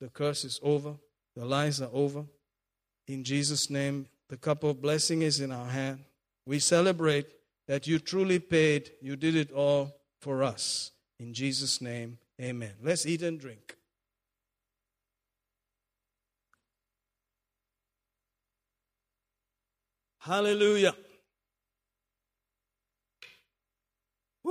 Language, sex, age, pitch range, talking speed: English, male, 50-69, 125-175 Hz, 100 wpm